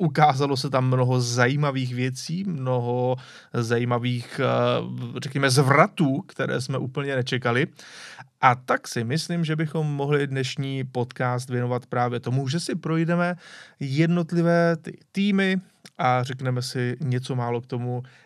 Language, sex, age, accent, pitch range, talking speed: Czech, male, 30-49, native, 125-160 Hz, 125 wpm